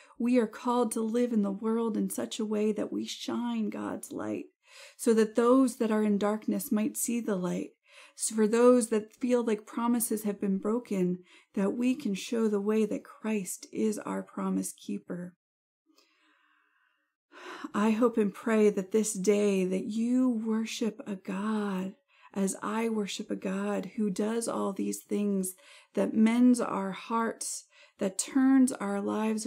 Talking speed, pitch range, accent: 165 wpm, 200-250 Hz, American